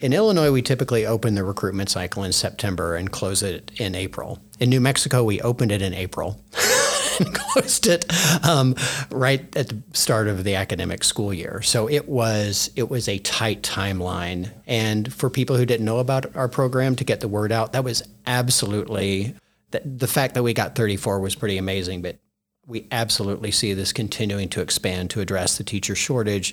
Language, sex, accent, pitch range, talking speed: English, male, American, 100-135 Hz, 190 wpm